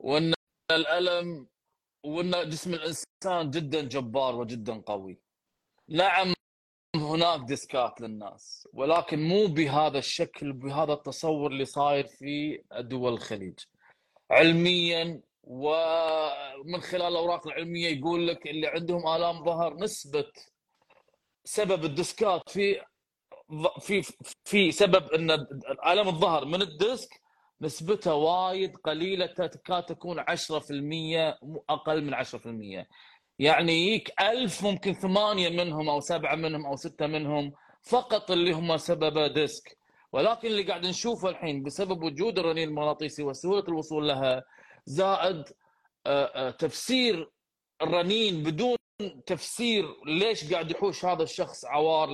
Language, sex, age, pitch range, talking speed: Arabic, male, 20-39, 150-185 Hz, 110 wpm